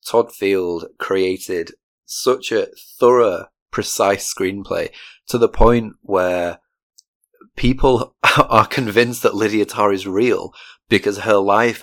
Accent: British